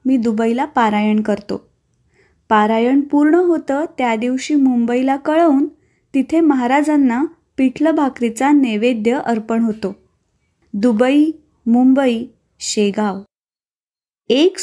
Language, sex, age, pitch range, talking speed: Marathi, female, 20-39, 215-270 Hz, 90 wpm